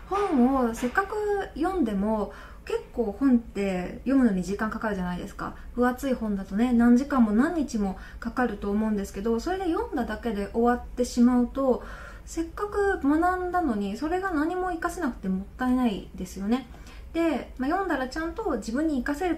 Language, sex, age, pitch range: Japanese, female, 20-39, 215-325 Hz